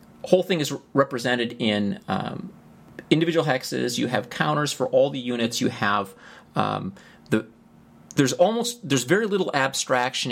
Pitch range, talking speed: 100-130 Hz, 145 wpm